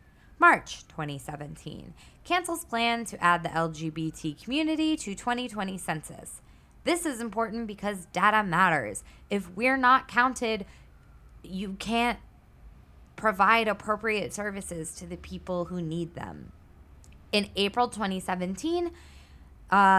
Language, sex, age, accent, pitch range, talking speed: English, female, 20-39, American, 170-230 Hz, 110 wpm